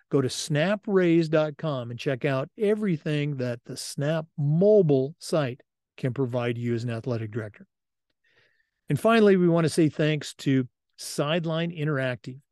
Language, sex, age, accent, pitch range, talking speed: English, male, 50-69, American, 130-160 Hz, 140 wpm